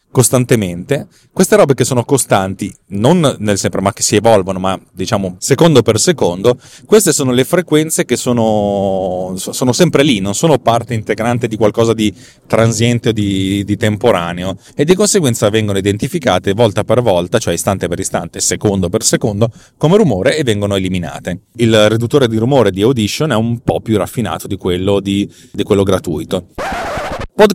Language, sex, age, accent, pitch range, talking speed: Italian, male, 30-49, native, 100-130 Hz, 170 wpm